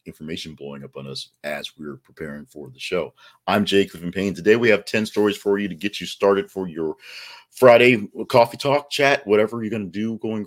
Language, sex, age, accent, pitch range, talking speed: English, male, 40-59, American, 85-110 Hz, 220 wpm